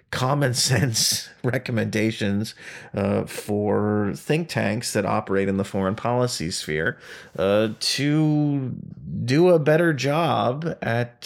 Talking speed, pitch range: 110 wpm, 100-125 Hz